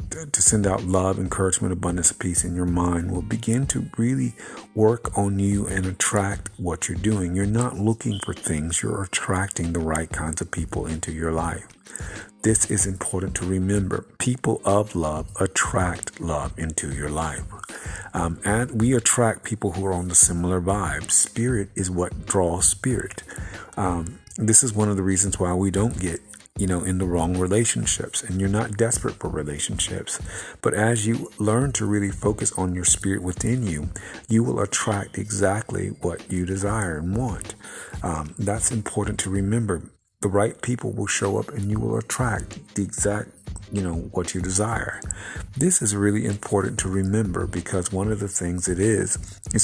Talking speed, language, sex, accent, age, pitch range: 175 wpm, English, male, American, 50-69, 90-105 Hz